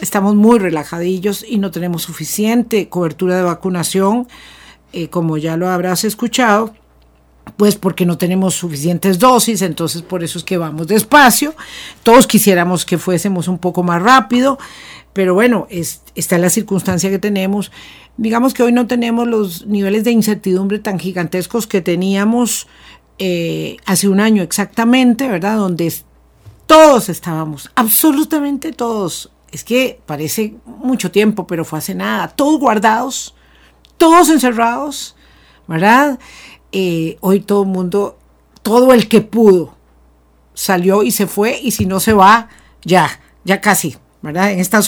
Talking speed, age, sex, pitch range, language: 140 wpm, 50-69, female, 175-225 Hz, Spanish